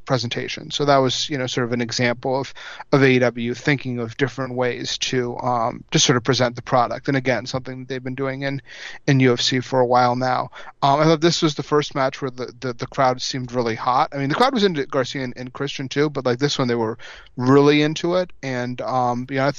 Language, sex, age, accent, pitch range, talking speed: English, male, 30-49, American, 125-140 Hz, 240 wpm